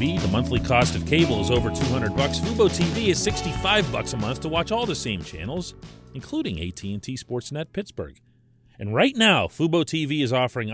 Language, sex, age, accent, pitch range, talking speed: English, male, 40-59, American, 100-135 Hz, 185 wpm